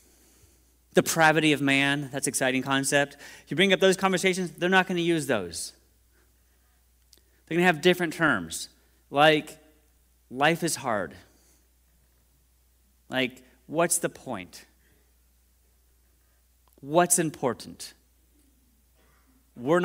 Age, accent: 40-59, American